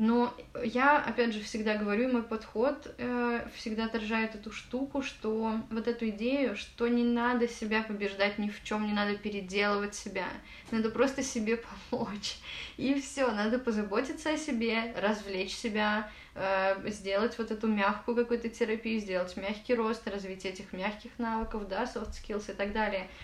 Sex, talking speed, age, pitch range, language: female, 155 wpm, 20-39, 205-245 Hz, Russian